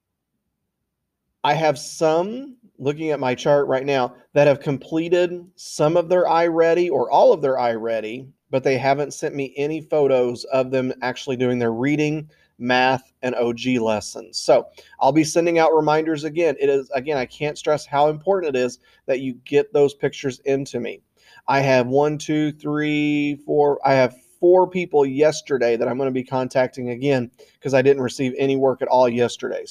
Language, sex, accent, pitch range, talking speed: English, male, American, 130-160 Hz, 180 wpm